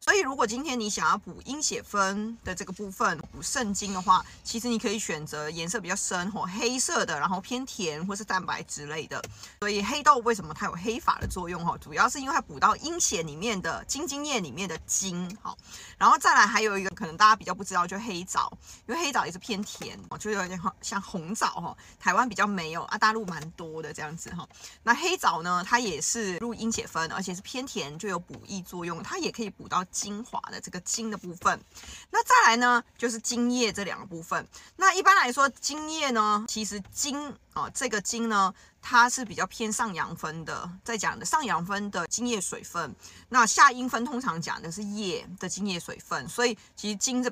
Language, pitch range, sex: Chinese, 180-235 Hz, female